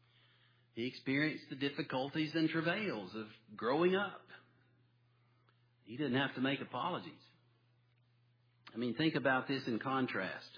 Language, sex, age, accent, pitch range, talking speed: English, male, 50-69, American, 120-145 Hz, 125 wpm